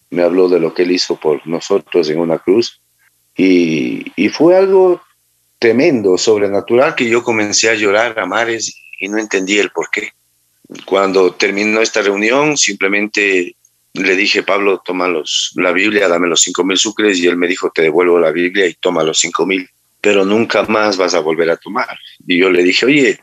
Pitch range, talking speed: 90-125 Hz, 190 wpm